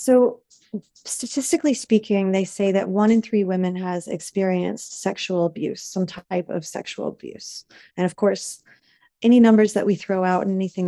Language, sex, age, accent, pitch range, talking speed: English, female, 30-49, American, 180-215 Hz, 165 wpm